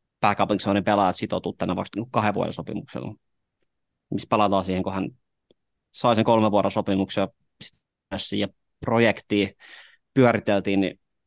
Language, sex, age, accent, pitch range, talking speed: Finnish, male, 30-49, native, 95-110 Hz, 100 wpm